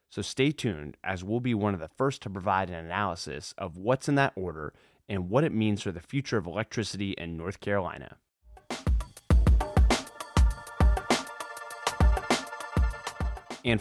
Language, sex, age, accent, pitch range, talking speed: English, male, 30-49, American, 90-125 Hz, 140 wpm